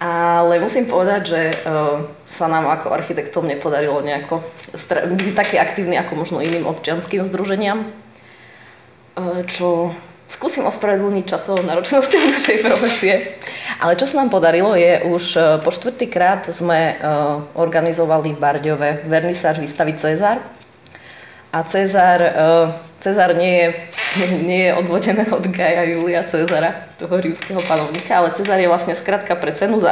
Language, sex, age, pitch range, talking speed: Slovak, female, 20-39, 160-190 Hz, 130 wpm